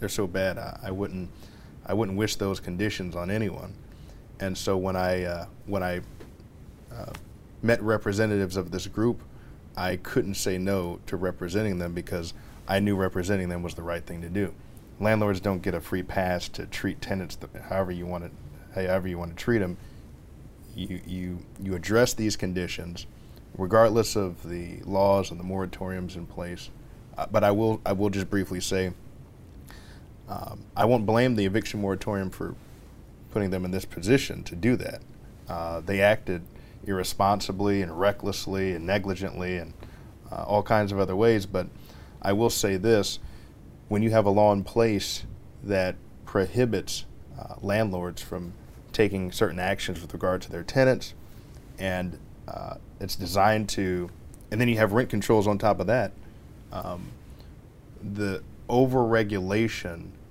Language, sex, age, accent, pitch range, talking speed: English, male, 20-39, American, 90-105 Hz, 160 wpm